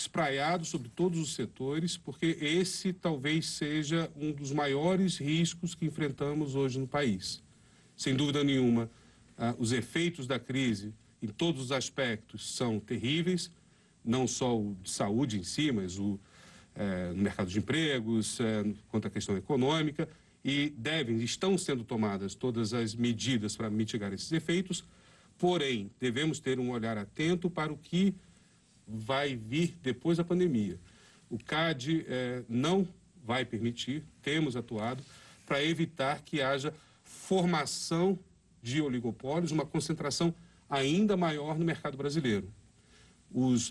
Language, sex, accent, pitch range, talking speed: Portuguese, male, Brazilian, 120-165 Hz, 135 wpm